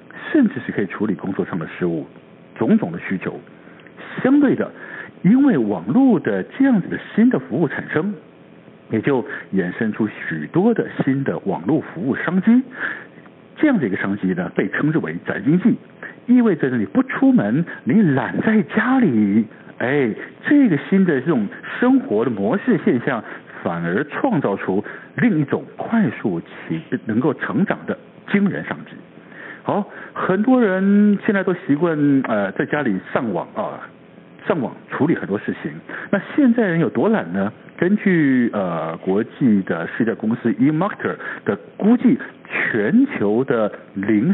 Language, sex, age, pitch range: Chinese, male, 60-79, 165-235 Hz